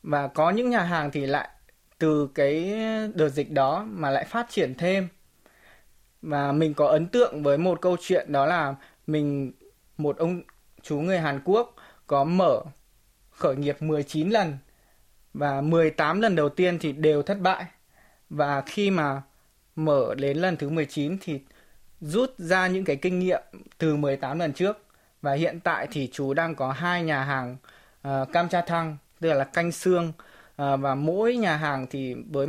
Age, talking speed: 20-39, 170 wpm